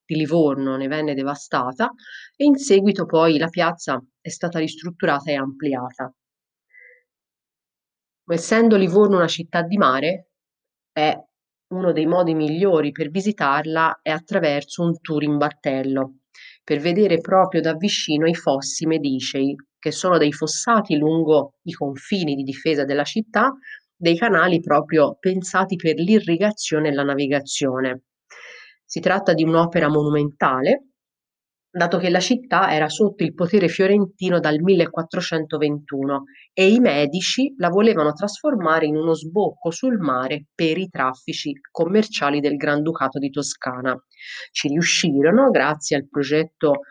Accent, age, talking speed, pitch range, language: native, 30-49, 130 wpm, 145-185 Hz, Italian